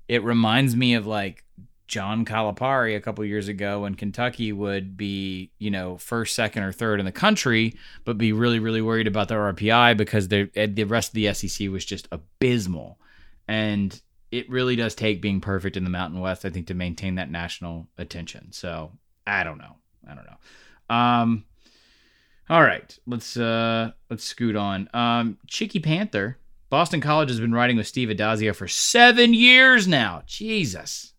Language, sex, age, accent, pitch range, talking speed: English, male, 20-39, American, 100-120 Hz, 175 wpm